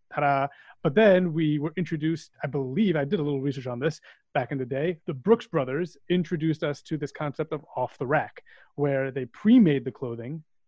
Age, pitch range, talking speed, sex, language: 30-49, 140-180 Hz, 200 wpm, male, English